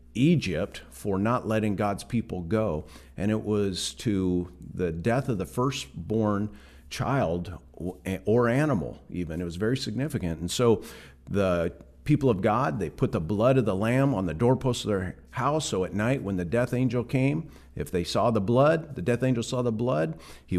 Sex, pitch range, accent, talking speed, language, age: male, 80-125 Hz, American, 185 wpm, English, 50-69